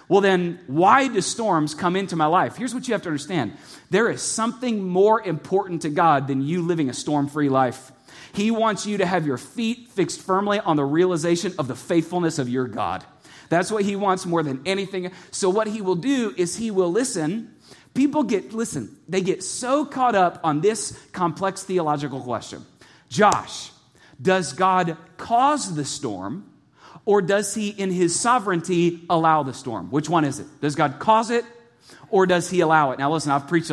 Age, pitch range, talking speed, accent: 30-49, 150-200 Hz, 190 wpm, American